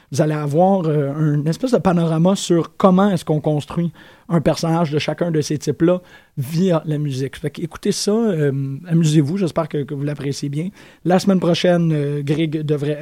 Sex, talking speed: male, 175 wpm